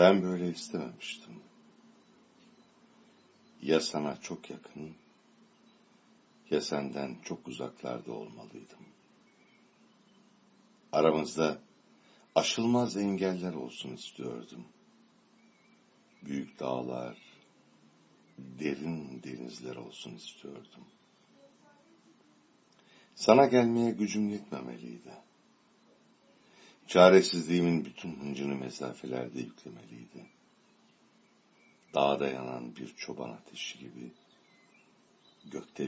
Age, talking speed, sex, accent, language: 60-79, 65 wpm, male, Turkish, English